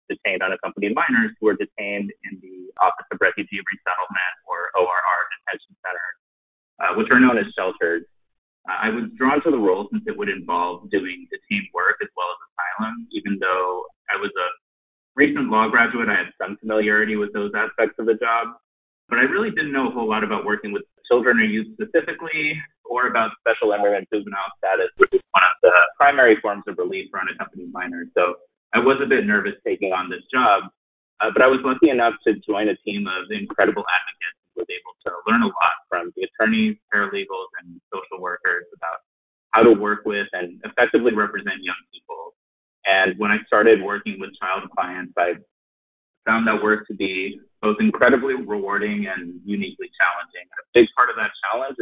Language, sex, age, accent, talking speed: English, male, 30-49, American, 190 wpm